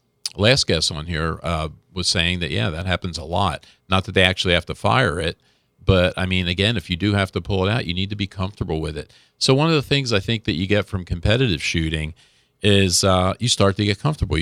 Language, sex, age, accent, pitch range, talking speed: English, male, 50-69, American, 85-105 Hz, 250 wpm